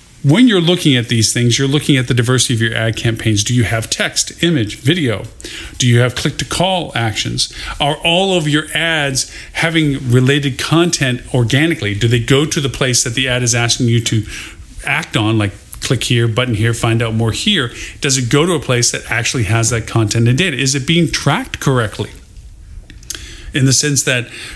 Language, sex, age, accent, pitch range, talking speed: English, male, 40-59, American, 115-140 Hz, 200 wpm